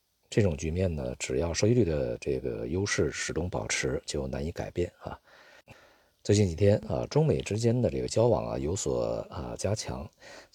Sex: male